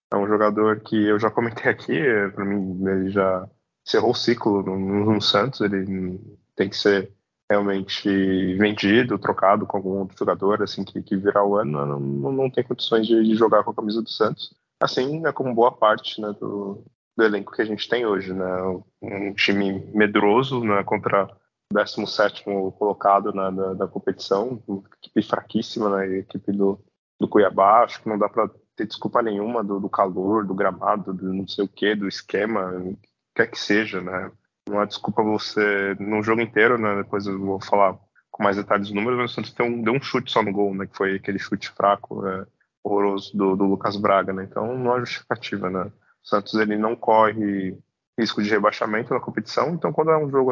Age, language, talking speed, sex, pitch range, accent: 20-39, Portuguese, 200 wpm, male, 95-110 Hz, Brazilian